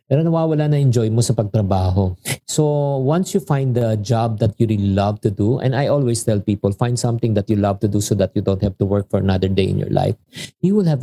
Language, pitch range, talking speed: Filipino, 105-145 Hz, 260 wpm